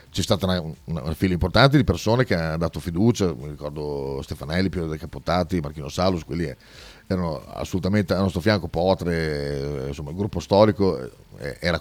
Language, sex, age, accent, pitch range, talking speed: Italian, male, 40-59, native, 80-100 Hz, 175 wpm